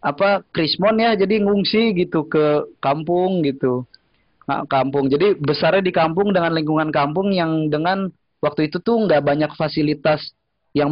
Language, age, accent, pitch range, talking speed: Indonesian, 20-39, native, 135-170 Hz, 150 wpm